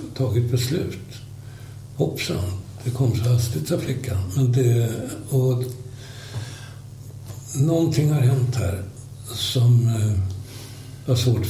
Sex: male